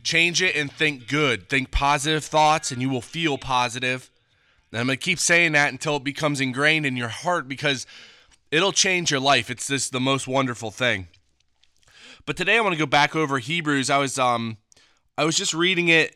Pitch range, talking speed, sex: 125-155 Hz, 200 wpm, male